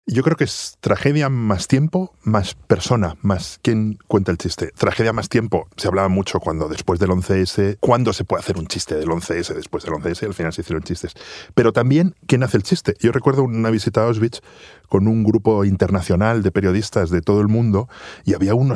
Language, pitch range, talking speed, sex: Spanish, 95-125 Hz, 210 wpm, male